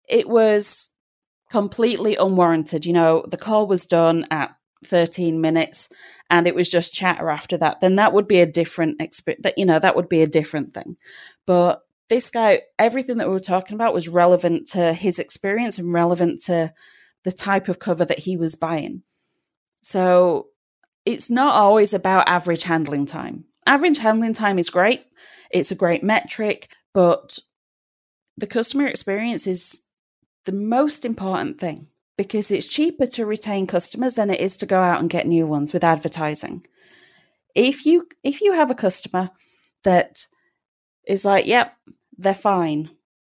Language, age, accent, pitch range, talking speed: English, 30-49, British, 175-225 Hz, 165 wpm